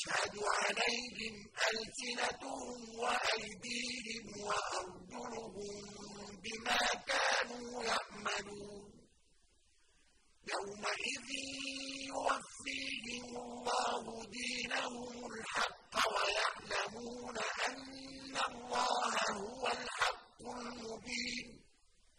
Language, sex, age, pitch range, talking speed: Arabic, female, 50-69, 215-245 Hz, 45 wpm